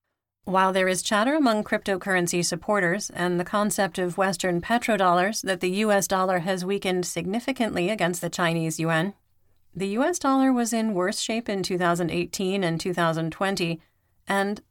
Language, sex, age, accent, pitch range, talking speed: English, female, 30-49, American, 175-210 Hz, 145 wpm